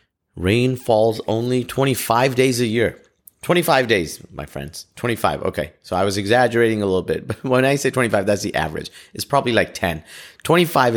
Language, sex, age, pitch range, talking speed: English, male, 30-49, 95-115 Hz, 180 wpm